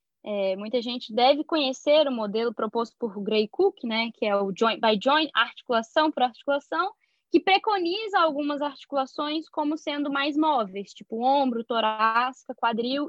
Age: 10-29